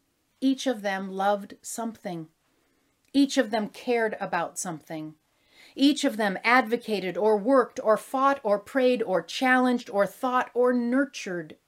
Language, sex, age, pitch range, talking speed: English, female, 40-59, 195-245 Hz, 140 wpm